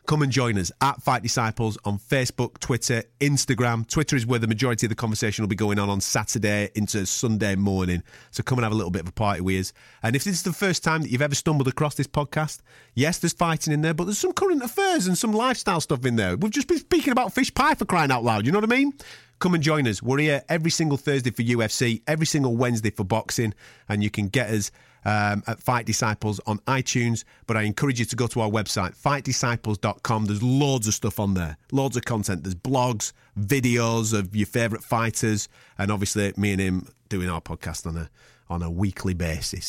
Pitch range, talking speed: 105-140 Hz, 230 wpm